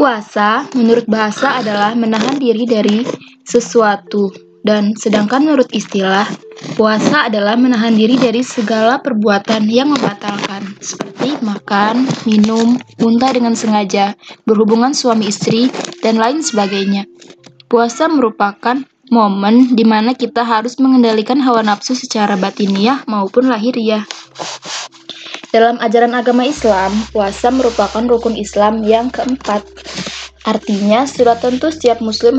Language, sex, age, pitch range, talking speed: Malay, female, 20-39, 210-245 Hz, 115 wpm